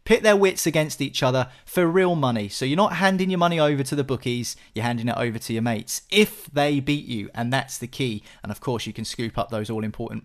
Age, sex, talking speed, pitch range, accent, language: 30-49, male, 260 wpm, 120-165 Hz, British, English